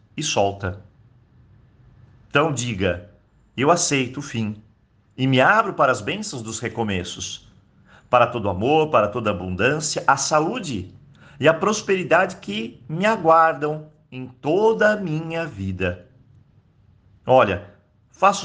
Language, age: Portuguese, 50-69